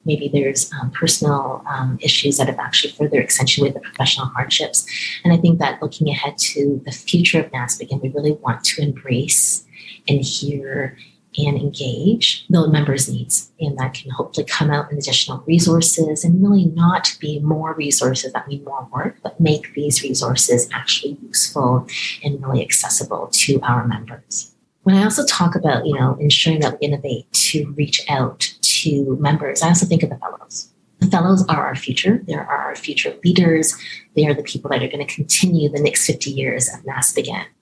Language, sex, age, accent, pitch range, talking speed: English, female, 30-49, American, 135-160 Hz, 185 wpm